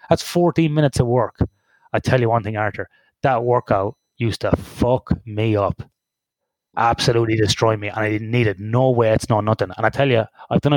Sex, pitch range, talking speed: male, 110-145 Hz, 205 wpm